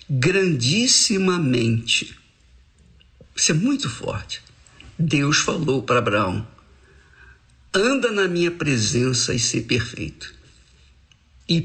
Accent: Brazilian